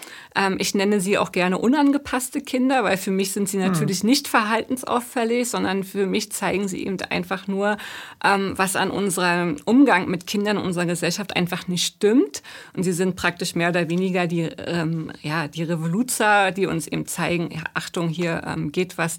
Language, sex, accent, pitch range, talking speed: German, female, German, 180-225 Hz, 170 wpm